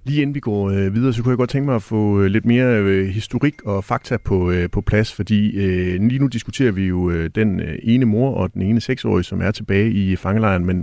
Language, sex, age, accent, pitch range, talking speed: Danish, male, 40-59, native, 95-125 Hz, 210 wpm